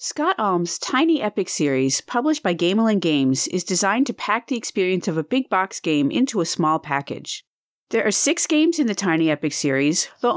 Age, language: 40-59, English